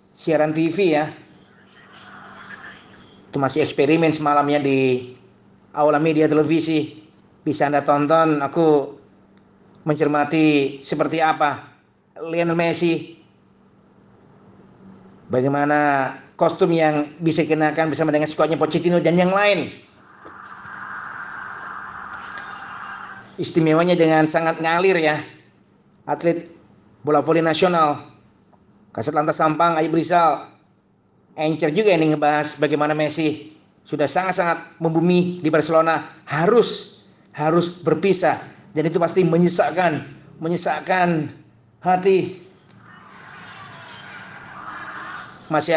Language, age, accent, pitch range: Indonesian, 40-59, native, 150-170 Hz